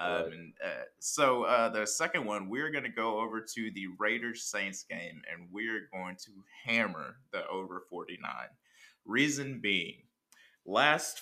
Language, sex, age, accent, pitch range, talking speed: English, male, 20-39, American, 100-125 Hz, 145 wpm